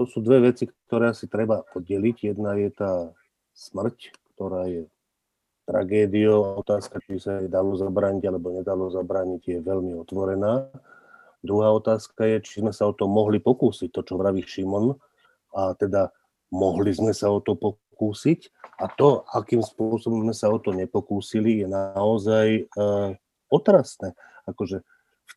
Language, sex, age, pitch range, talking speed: Slovak, male, 40-59, 100-115 Hz, 150 wpm